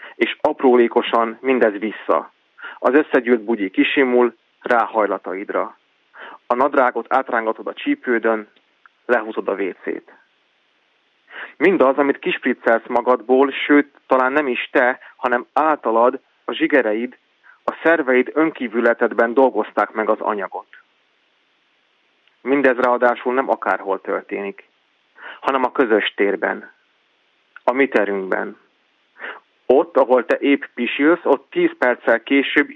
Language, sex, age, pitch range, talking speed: Hungarian, male, 30-49, 115-145 Hz, 105 wpm